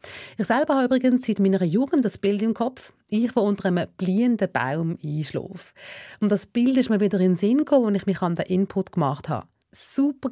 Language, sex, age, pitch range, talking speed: German, female, 30-49, 160-225 Hz, 215 wpm